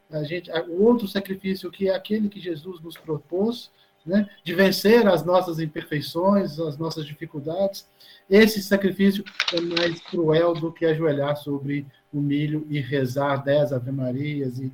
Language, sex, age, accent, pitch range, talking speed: Portuguese, male, 50-69, Brazilian, 130-175 Hz, 145 wpm